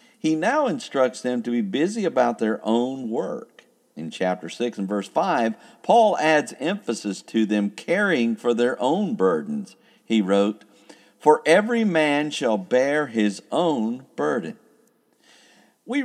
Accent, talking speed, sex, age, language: American, 140 wpm, male, 50-69, English